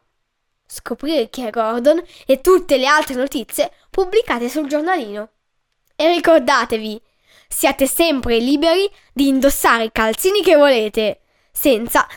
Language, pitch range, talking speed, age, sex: Italian, 240-340 Hz, 120 wpm, 10-29, female